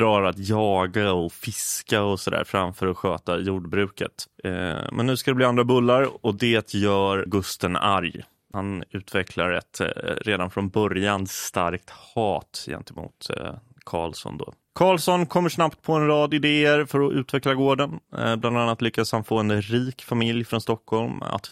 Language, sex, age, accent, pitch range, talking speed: English, male, 20-39, Swedish, 100-130 Hz, 155 wpm